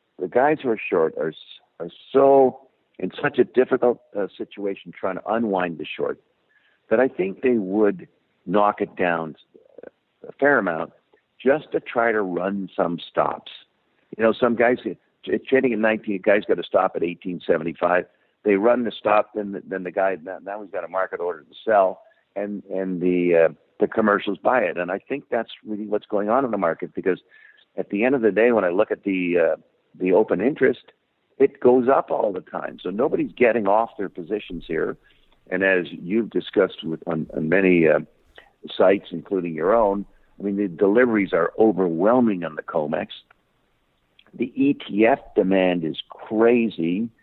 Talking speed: 185 wpm